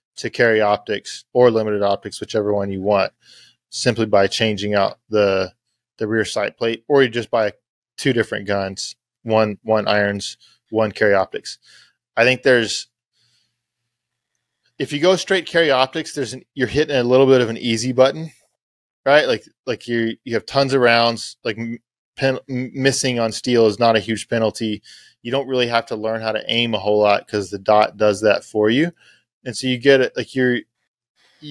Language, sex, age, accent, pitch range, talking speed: English, male, 20-39, American, 105-125 Hz, 185 wpm